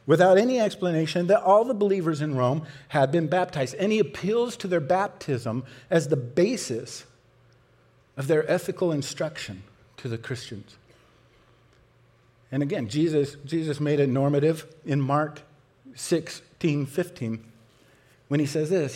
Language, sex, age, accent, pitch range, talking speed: English, male, 50-69, American, 120-170 Hz, 135 wpm